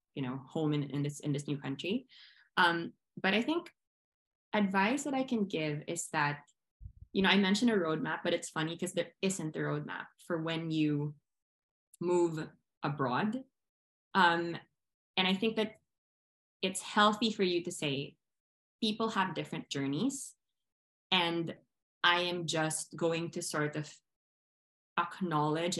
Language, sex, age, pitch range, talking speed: Filipino, female, 20-39, 145-185 Hz, 150 wpm